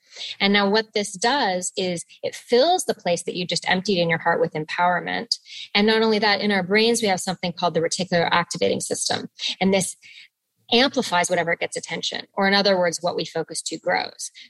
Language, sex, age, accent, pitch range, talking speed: English, female, 20-39, American, 175-225 Hz, 205 wpm